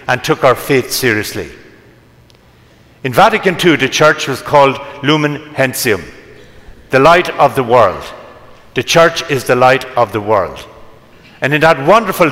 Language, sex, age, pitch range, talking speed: English, male, 60-79, 140-185 Hz, 150 wpm